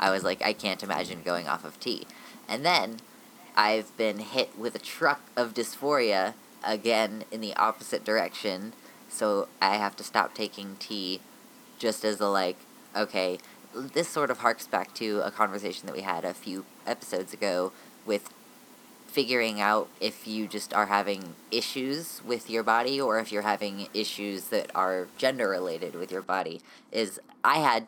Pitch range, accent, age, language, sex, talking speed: 100-115 Hz, American, 10-29, English, female, 170 wpm